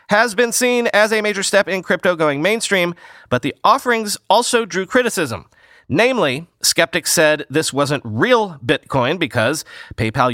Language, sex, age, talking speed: English, male, 30-49, 150 wpm